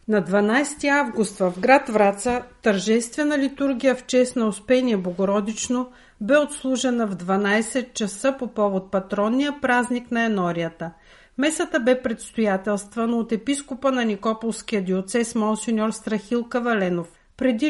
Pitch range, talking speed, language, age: 205-255 Hz, 120 wpm, Bulgarian, 50-69